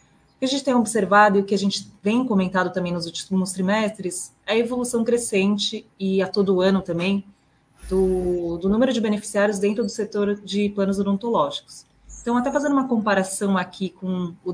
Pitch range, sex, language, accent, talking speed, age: 175-205 Hz, female, Portuguese, Brazilian, 185 wpm, 20-39